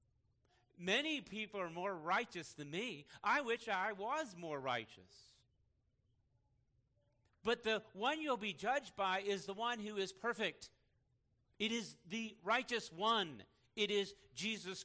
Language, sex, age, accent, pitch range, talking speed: English, male, 50-69, American, 120-190 Hz, 135 wpm